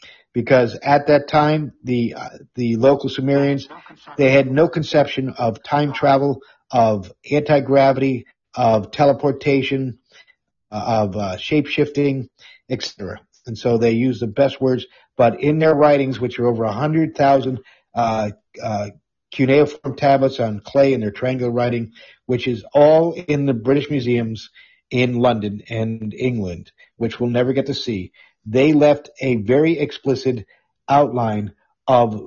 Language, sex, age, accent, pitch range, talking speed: English, male, 50-69, American, 115-140 Hz, 140 wpm